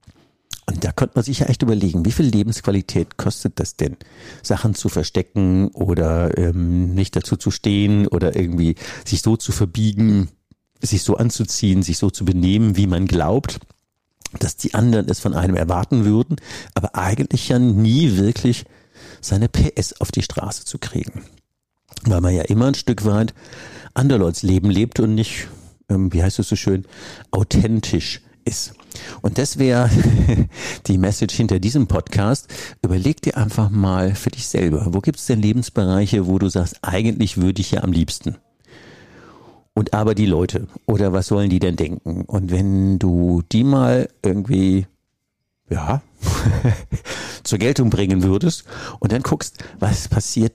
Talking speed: 160 wpm